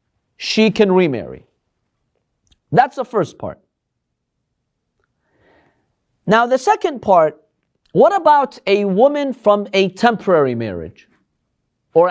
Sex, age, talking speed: male, 40-59, 100 wpm